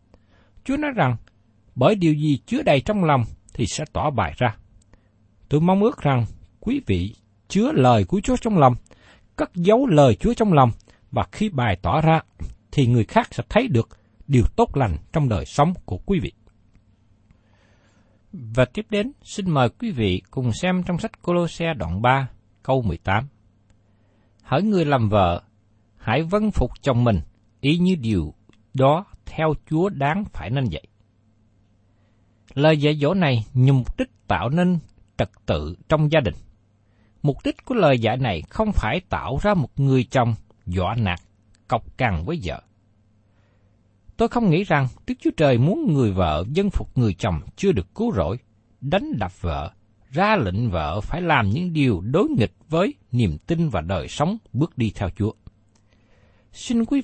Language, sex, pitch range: Vietnamese, male, 105-160 Hz